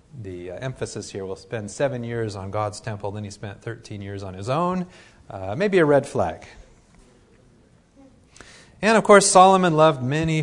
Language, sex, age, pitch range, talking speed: English, male, 40-59, 110-155 Hz, 175 wpm